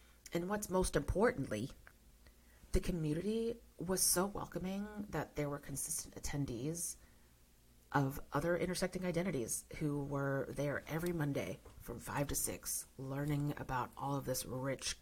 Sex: female